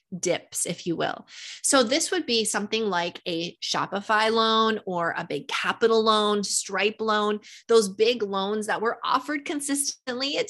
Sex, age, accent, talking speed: female, 20-39, American, 160 wpm